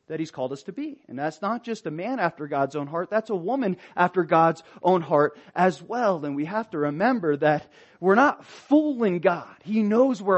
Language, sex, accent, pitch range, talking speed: English, male, American, 170-230 Hz, 220 wpm